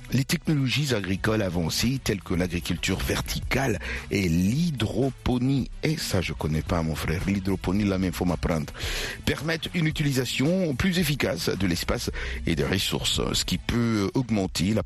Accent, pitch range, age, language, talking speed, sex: French, 85-110 Hz, 60-79, French, 150 wpm, male